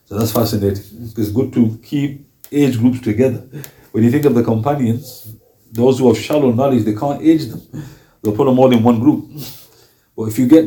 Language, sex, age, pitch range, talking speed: English, male, 50-69, 110-150 Hz, 200 wpm